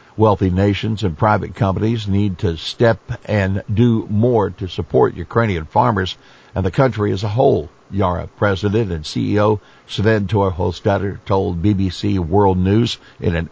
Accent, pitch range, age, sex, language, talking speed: American, 95-115 Hz, 60-79, male, English, 145 wpm